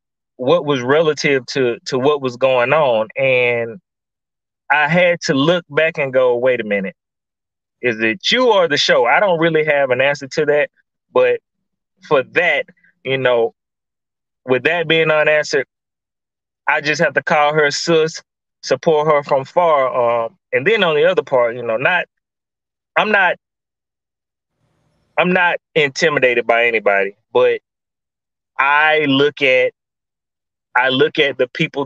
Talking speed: 150 wpm